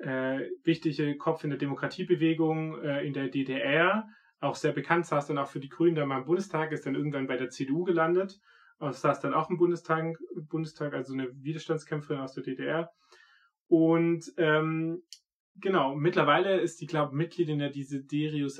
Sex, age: male, 30-49